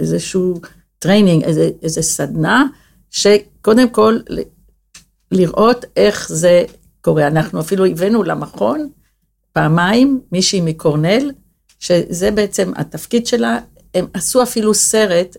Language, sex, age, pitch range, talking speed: Hebrew, female, 50-69, 170-215 Hz, 100 wpm